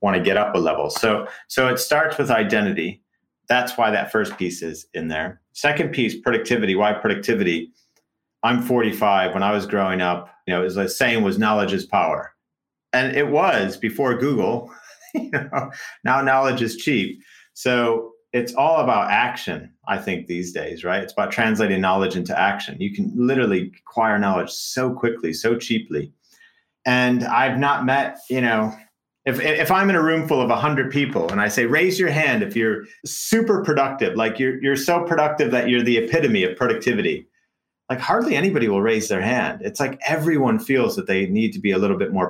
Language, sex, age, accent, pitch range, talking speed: English, male, 40-59, American, 110-150 Hz, 190 wpm